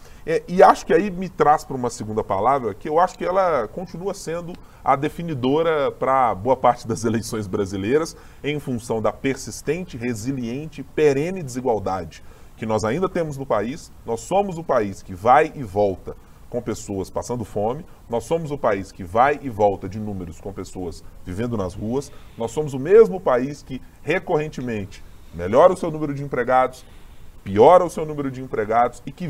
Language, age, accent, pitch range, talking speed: Portuguese, 20-39, Brazilian, 110-170 Hz, 175 wpm